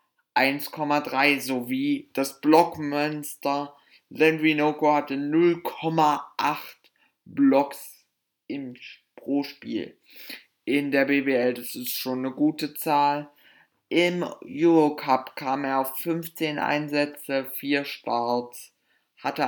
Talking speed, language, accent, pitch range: 90 wpm, German, German, 130-150 Hz